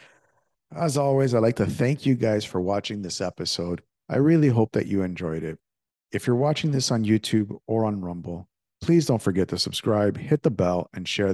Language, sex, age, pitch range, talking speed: English, male, 50-69, 90-120 Hz, 200 wpm